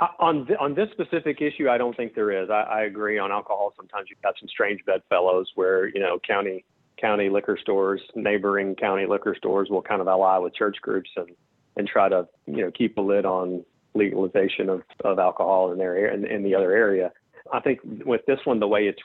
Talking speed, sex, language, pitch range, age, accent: 225 wpm, male, English, 100-120 Hz, 40-59, American